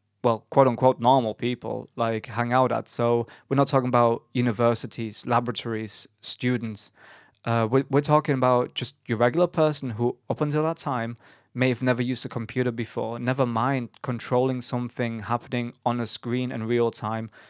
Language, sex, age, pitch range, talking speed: English, male, 20-39, 115-140 Hz, 165 wpm